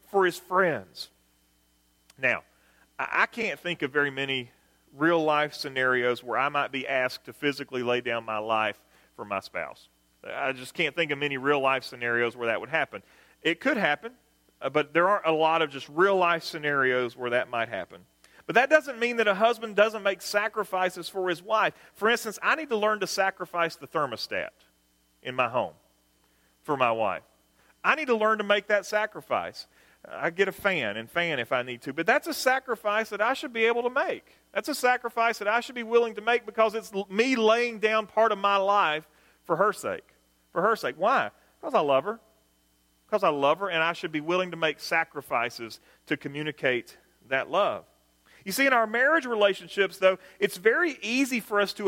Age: 40-59